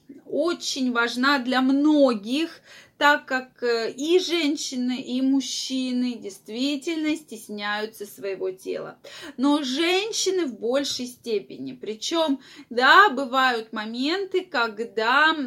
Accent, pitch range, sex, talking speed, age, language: native, 220-300 Hz, female, 95 wpm, 20-39, Russian